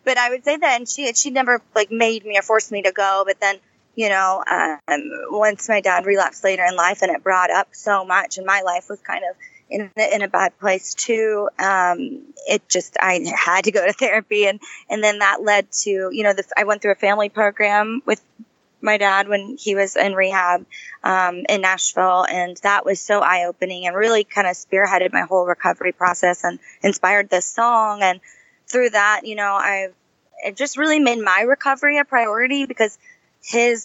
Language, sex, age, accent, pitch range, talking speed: English, female, 20-39, American, 185-220 Hz, 205 wpm